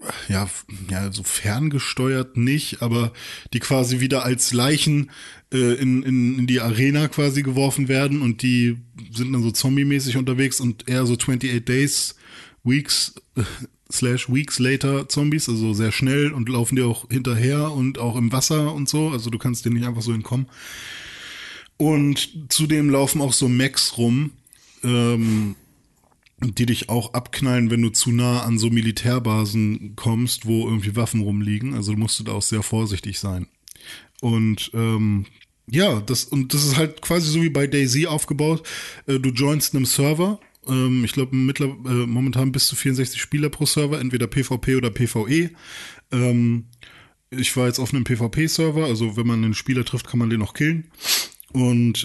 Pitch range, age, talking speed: 115-135 Hz, 20-39, 165 wpm